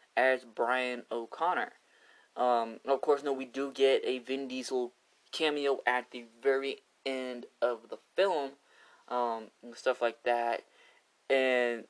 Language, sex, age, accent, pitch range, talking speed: English, male, 20-39, American, 120-155 Hz, 135 wpm